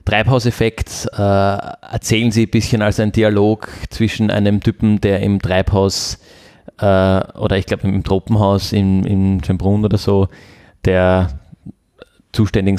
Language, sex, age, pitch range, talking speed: German, male, 20-39, 95-115 Hz, 125 wpm